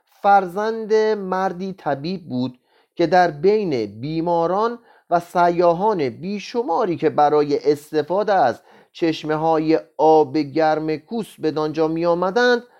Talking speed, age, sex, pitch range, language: 115 wpm, 30-49, male, 145-205 Hz, Persian